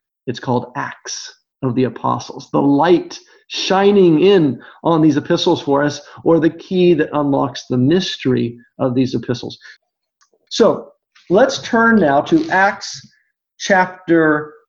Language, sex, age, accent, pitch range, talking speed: English, male, 40-59, American, 155-225 Hz, 130 wpm